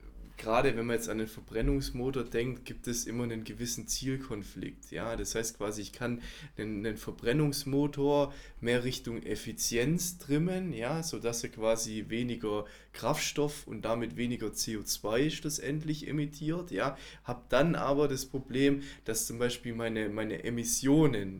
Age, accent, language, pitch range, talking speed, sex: 20-39, German, German, 115-135 Hz, 145 wpm, male